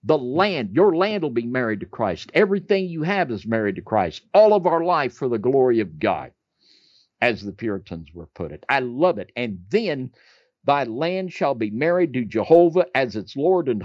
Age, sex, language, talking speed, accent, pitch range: 50-69, male, English, 205 wpm, American, 120-185 Hz